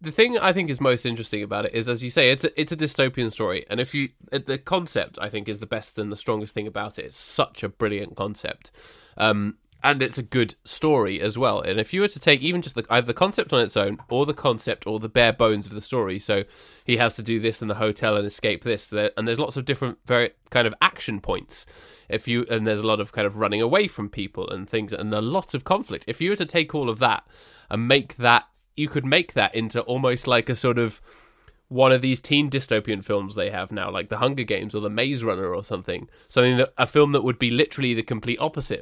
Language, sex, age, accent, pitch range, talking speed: English, male, 20-39, British, 105-130 Hz, 255 wpm